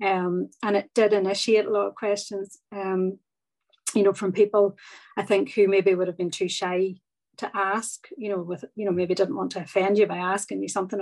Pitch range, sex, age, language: 185-210 Hz, female, 30-49, English